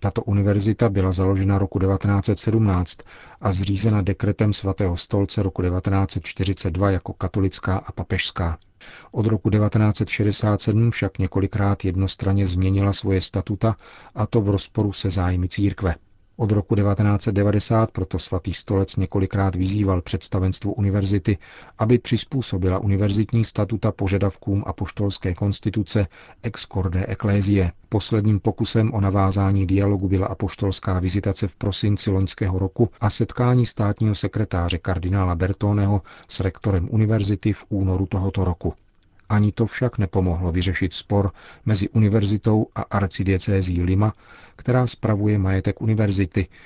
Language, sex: Czech, male